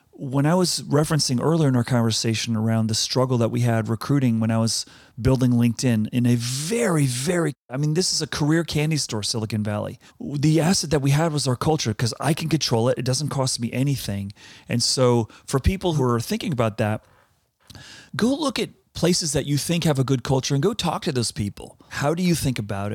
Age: 30-49